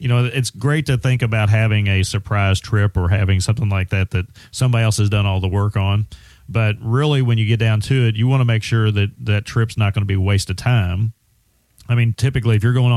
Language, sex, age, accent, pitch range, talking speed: English, male, 40-59, American, 100-115 Hz, 255 wpm